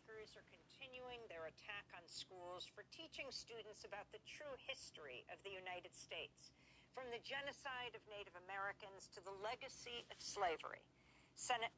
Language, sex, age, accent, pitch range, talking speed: English, female, 50-69, American, 195-255 Hz, 150 wpm